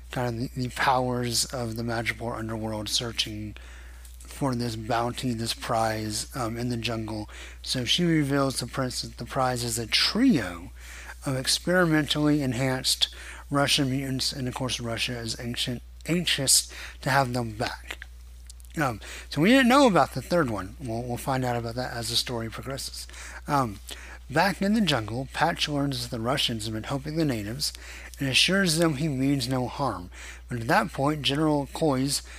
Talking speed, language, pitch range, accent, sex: 170 wpm, English, 110-140 Hz, American, male